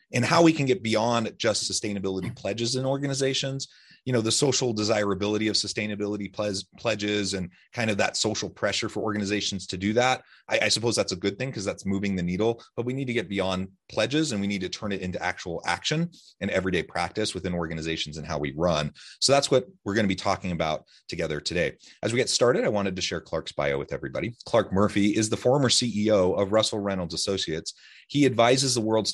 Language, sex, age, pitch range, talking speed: English, male, 30-49, 90-120 Hz, 215 wpm